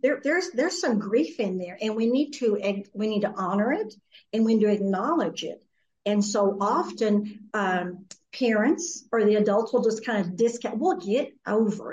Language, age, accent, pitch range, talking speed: English, 50-69, American, 195-235 Hz, 195 wpm